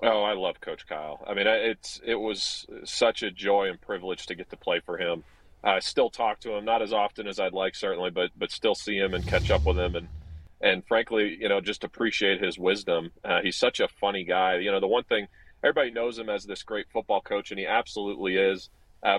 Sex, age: male, 40-59